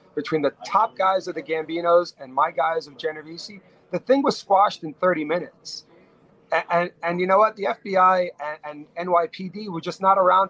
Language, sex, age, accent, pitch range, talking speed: English, male, 40-59, American, 145-185 Hz, 195 wpm